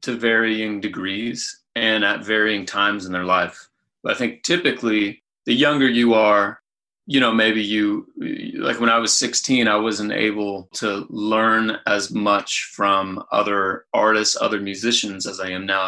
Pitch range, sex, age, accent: 100-115 Hz, male, 30-49, American